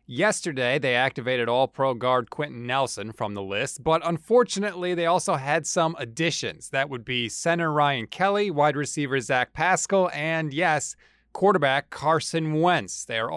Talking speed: 155 wpm